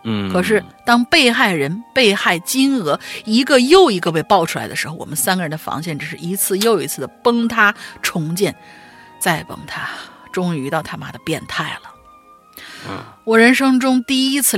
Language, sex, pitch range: Chinese, female, 165-235 Hz